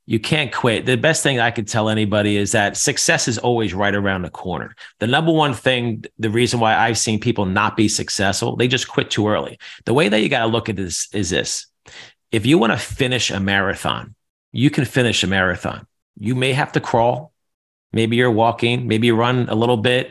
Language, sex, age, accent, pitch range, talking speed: English, male, 40-59, American, 115-145 Hz, 220 wpm